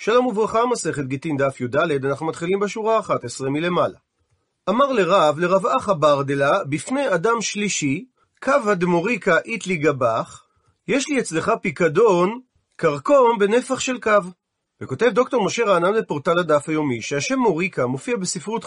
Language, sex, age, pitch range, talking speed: Hebrew, male, 40-59, 155-225 Hz, 140 wpm